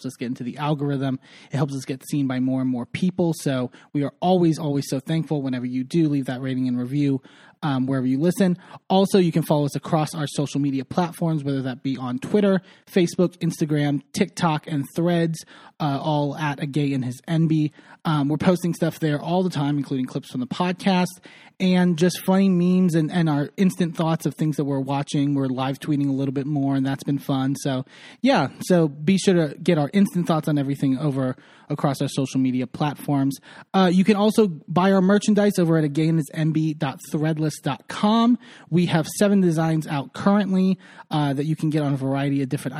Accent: American